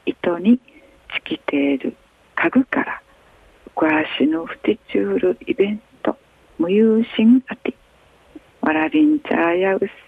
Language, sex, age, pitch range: Japanese, female, 60-79, 185-275 Hz